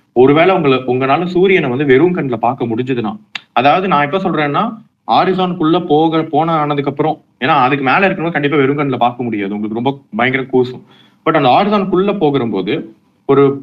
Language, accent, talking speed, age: Tamil, native, 165 wpm, 30-49